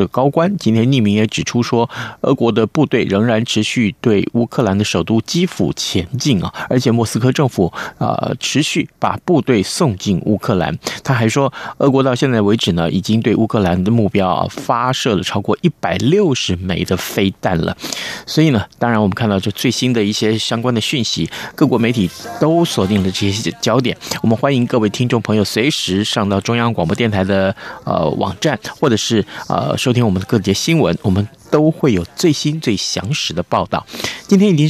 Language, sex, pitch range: Chinese, male, 100-130 Hz